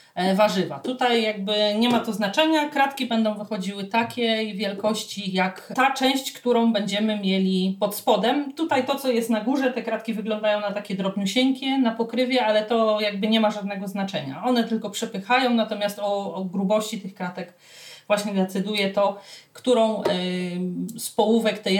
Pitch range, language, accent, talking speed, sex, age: 190-230 Hz, Polish, native, 160 wpm, female, 40-59